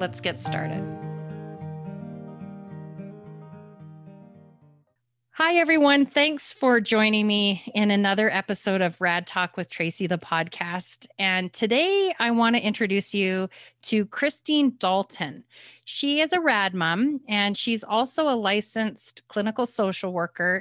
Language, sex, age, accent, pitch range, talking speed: English, female, 30-49, American, 185-235 Hz, 120 wpm